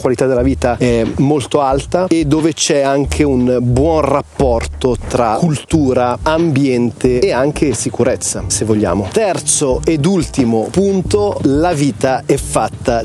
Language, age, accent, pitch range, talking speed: Italian, 30-49, native, 120-145 Hz, 135 wpm